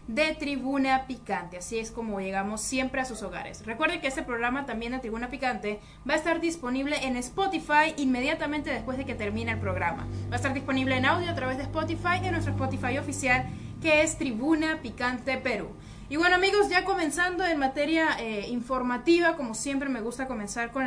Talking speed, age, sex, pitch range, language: 195 wpm, 20-39, female, 220-285 Hz, Spanish